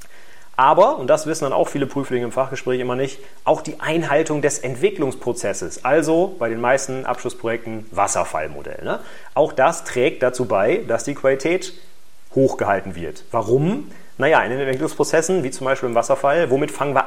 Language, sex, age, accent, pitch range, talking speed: German, male, 30-49, German, 125-165 Hz, 160 wpm